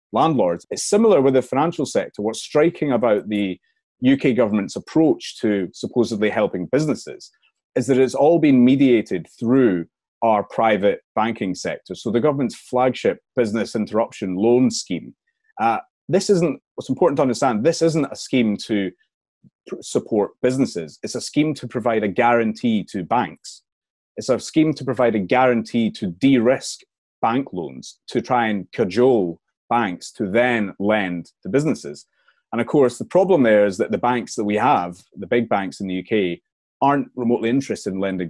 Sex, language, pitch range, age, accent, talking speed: male, English, 105-150 Hz, 30-49, British, 165 wpm